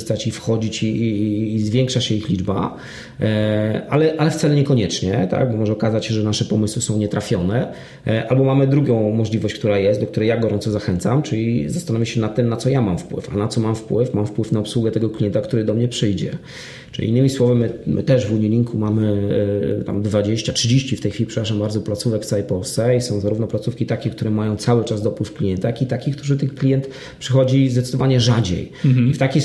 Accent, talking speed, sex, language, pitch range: native, 210 wpm, male, Polish, 110-130 Hz